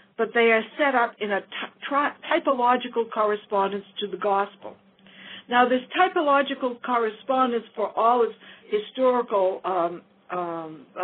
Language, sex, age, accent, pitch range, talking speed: English, female, 60-79, American, 200-260 Hz, 130 wpm